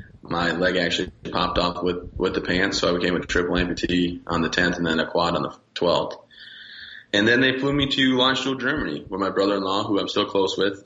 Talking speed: 225 wpm